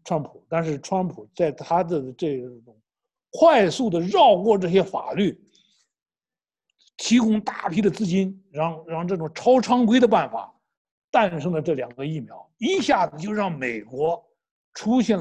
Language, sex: Chinese, male